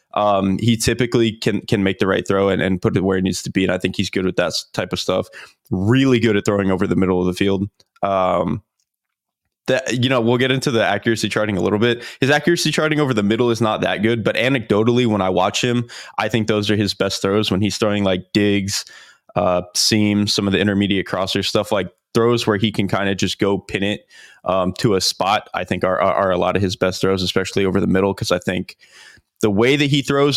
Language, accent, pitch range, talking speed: English, American, 95-120 Hz, 245 wpm